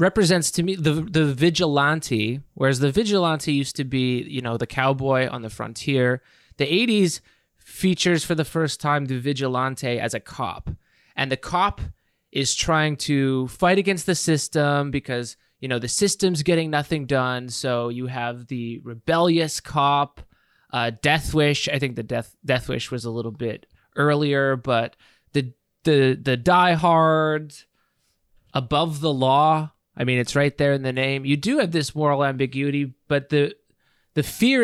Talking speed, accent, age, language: 165 wpm, American, 20-39, English